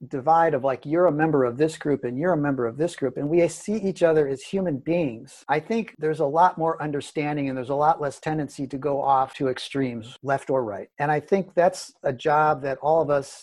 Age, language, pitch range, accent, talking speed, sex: 50-69, English, 135-165 Hz, American, 245 wpm, male